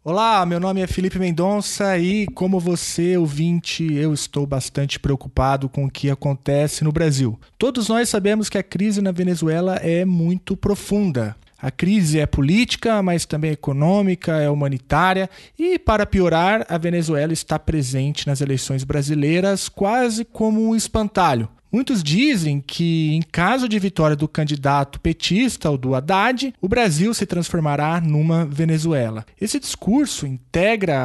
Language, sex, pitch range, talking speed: Portuguese, male, 145-200 Hz, 145 wpm